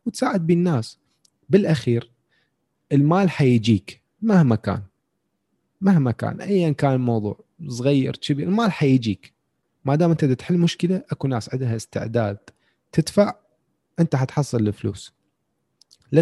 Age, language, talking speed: 30-49, Arabic, 120 wpm